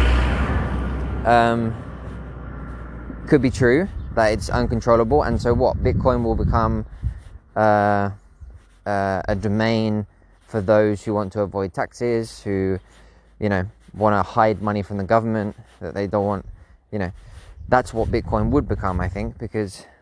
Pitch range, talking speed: 90-110 Hz, 145 wpm